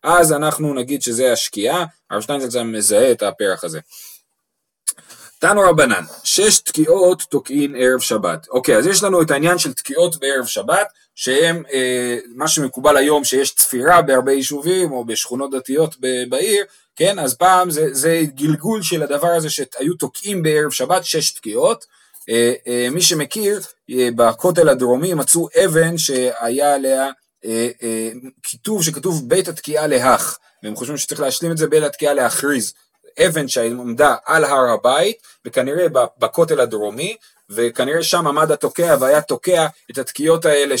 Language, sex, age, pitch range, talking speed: Hebrew, male, 30-49, 125-170 Hz, 145 wpm